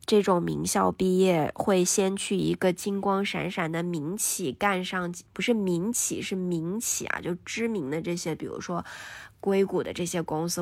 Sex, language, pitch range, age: female, Chinese, 165-200 Hz, 20-39